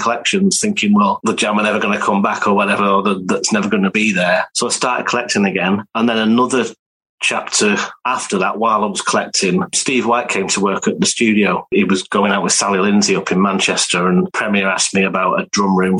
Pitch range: 100-120 Hz